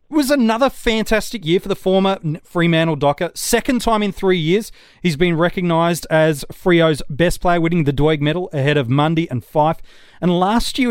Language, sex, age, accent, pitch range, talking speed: English, male, 30-49, Australian, 155-200 Hz, 180 wpm